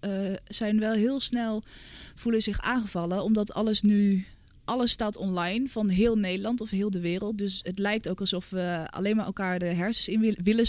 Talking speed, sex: 190 wpm, female